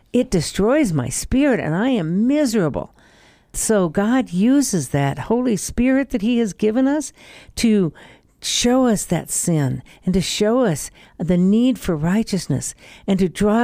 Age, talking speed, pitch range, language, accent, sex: 60-79, 155 wpm, 175-235 Hz, English, American, female